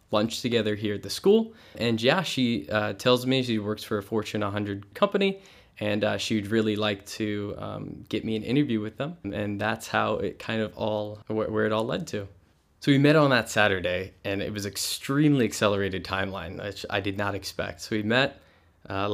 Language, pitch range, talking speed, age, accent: English, 100-120 Hz, 205 wpm, 10-29, American